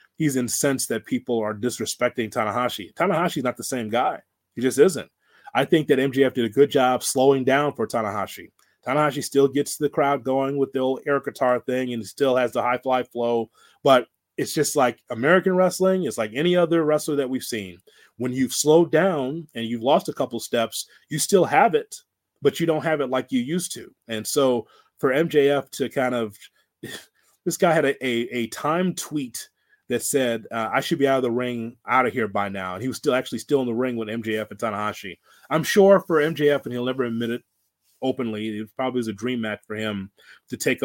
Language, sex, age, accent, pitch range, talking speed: English, male, 30-49, American, 110-140 Hz, 215 wpm